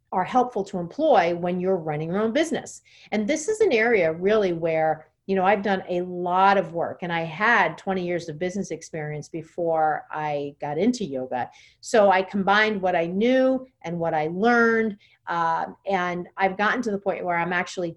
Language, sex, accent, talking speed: English, female, American, 195 wpm